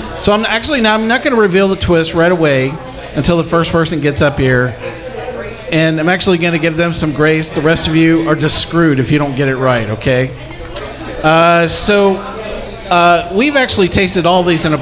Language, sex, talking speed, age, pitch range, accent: English, male, 215 wpm, 40-59, 135-170 Hz, American